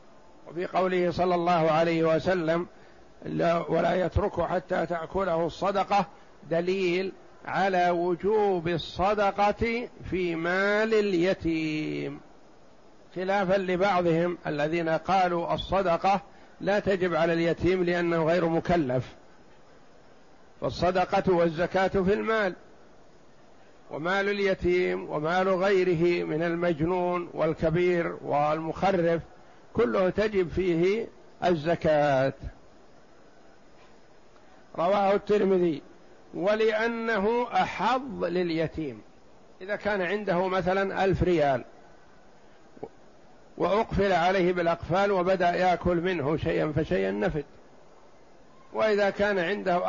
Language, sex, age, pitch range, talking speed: Arabic, male, 50-69, 170-195 Hz, 85 wpm